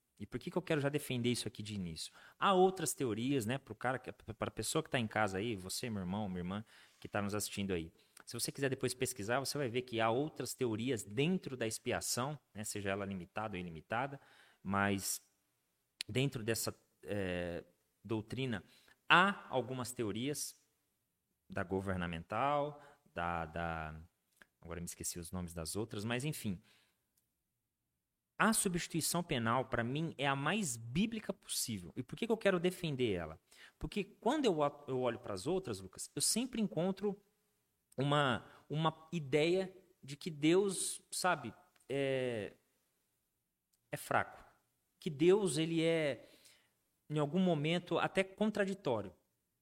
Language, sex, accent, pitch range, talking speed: Portuguese, male, Brazilian, 105-170 Hz, 150 wpm